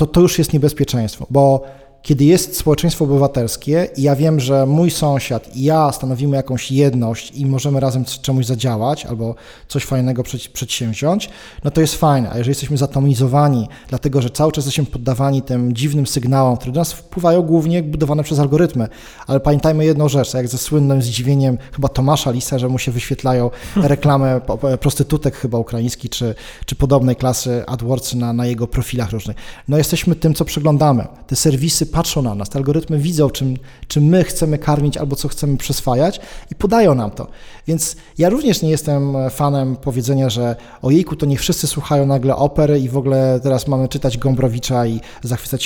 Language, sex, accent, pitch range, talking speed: Polish, male, native, 130-150 Hz, 175 wpm